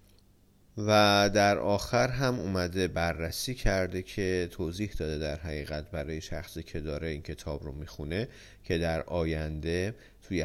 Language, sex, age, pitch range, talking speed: Persian, male, 40-59, 80-100 Hz, 140 wpm